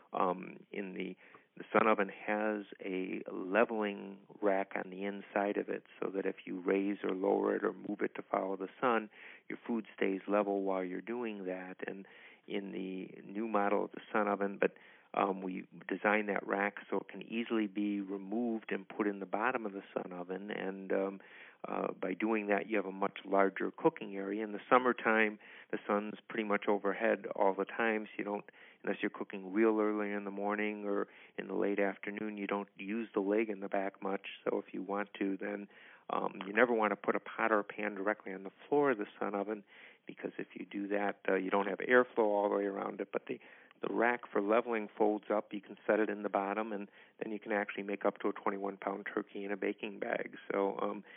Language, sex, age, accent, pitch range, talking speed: English, male, 50-69, American, 100-105 Hz, 220 wpm